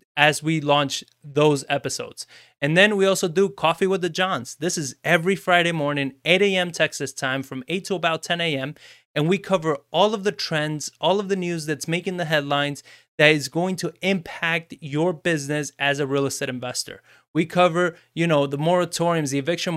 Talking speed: 195 wpm